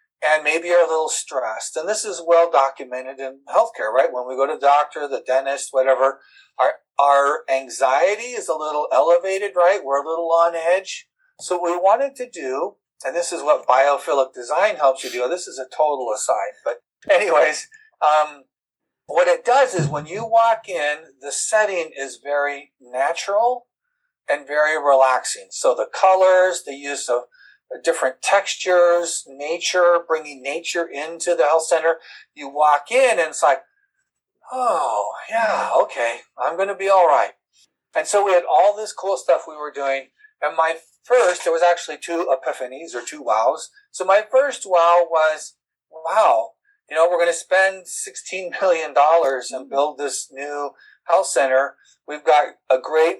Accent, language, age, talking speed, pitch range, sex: American, English, 50-69, 170 wpm, 140-195 Hz, male